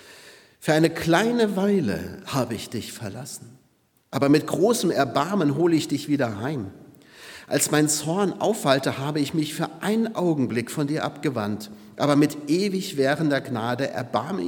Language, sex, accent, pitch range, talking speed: German, male, German, 115-150 Hz, 150 wpm